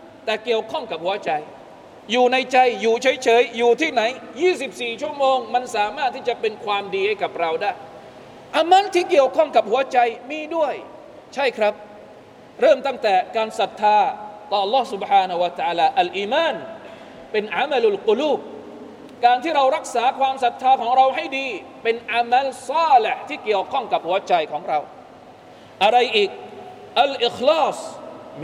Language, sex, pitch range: Thai, male, 220-300 Hz